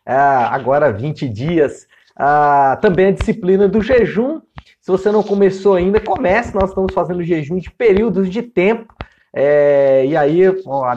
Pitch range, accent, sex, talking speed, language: 160-215 Hz, Brazilian, male, 135 wpm, Portuguese